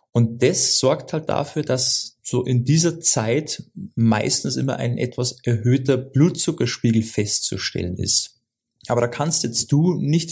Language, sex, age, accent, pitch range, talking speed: German, male, 20-39, German, 115-135 Hz, 140 wpm